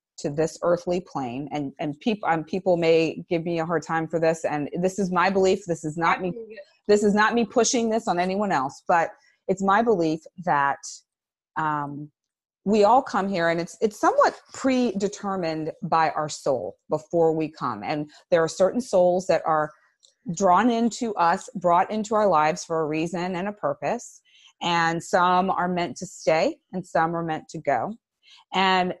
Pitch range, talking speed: 160-200 Hz, 185 wpm